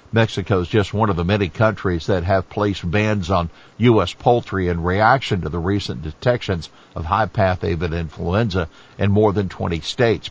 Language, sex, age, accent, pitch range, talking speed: English, male, 60-79, American, 95-120 Hz, 175 wpm